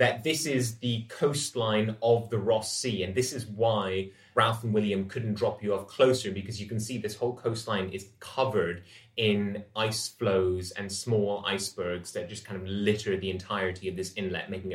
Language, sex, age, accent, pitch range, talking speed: English, male, 20-39, British, 100-120 Hz, 190 wpm